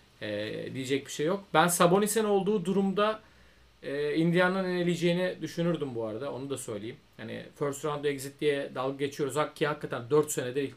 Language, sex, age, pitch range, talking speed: Turkish, male, 40-59, 135-170 Hz, 160 wpm